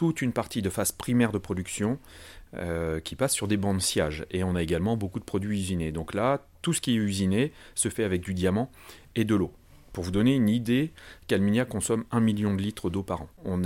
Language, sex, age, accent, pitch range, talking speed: French, male, 40-59, French, 90-115 Hz, 235 wpm